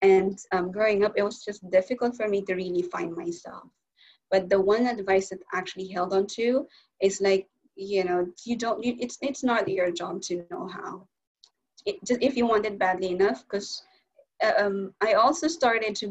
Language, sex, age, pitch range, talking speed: English, female, 20-39, 175-205 Hz, 195 wpm